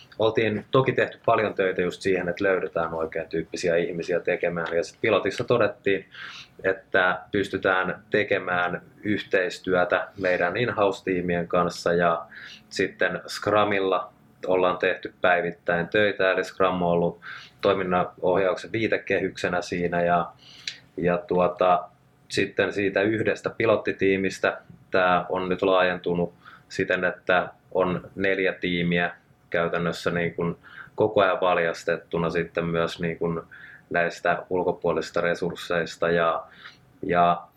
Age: 20-39